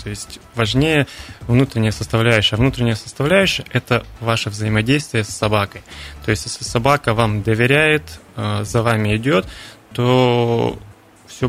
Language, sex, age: Russian, male, 20-39